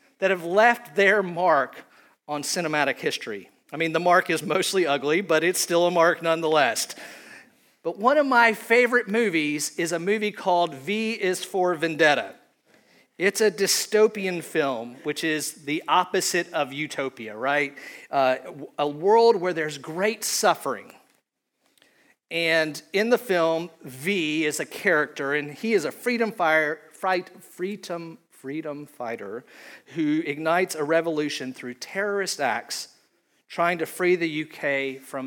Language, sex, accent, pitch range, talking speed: English, male, American, 150-195 Hz, 140 wpm